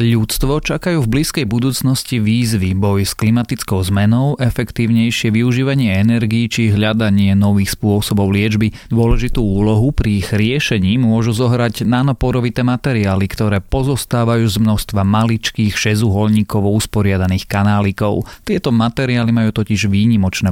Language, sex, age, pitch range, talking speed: Slovak, male, 30-49, 100-120 Hz, 115 wpm